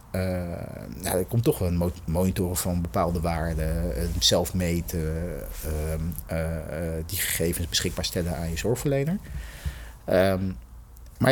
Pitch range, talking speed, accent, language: 85-115 Hz, 135 wpm, Dutch, Dutch